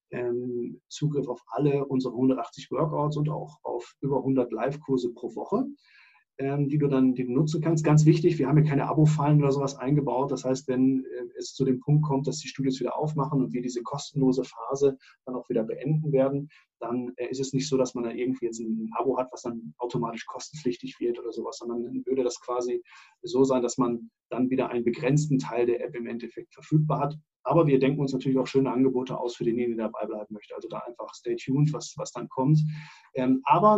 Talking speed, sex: 210 wpm, male